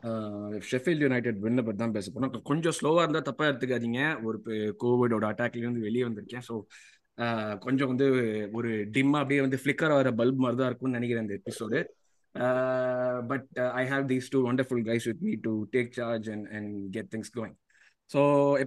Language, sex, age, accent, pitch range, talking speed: Tamil, male, 20-39, native, 110-130 Hz, 105 wpm